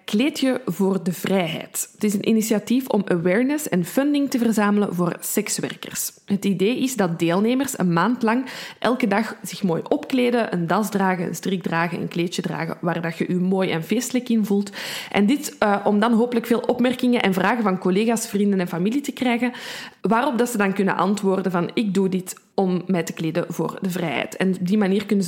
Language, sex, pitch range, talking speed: Dutch, female, 185-230 Hz, 200 wpm